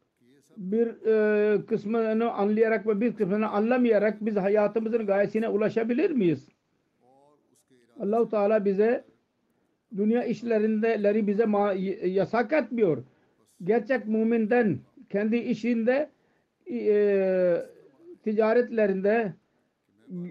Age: 60-79